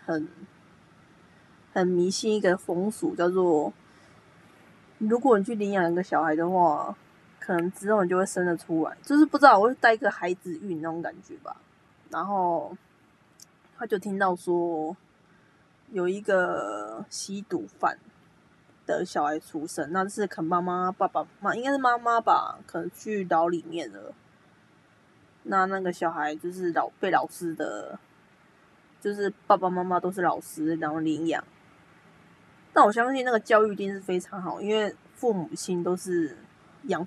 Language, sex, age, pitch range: Chinese, female, 20-39, 175-220 Hz